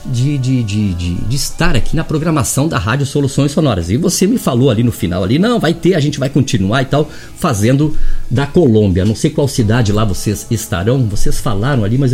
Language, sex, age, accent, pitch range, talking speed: Portuguese, male, 50-69, Brazilian, 115-160 Hz, 220 wpm